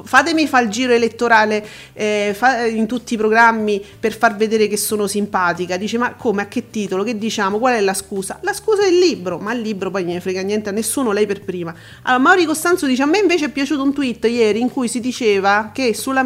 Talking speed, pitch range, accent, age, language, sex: 235 wpm, 210-260 Hz, native, 40-59, Italian, female